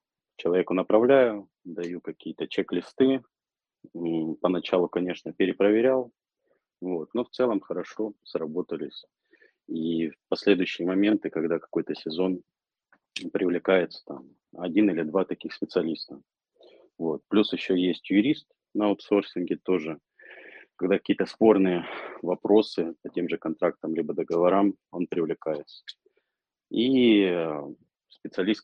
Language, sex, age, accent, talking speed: Russian, male, 30-49, native, 105 wpm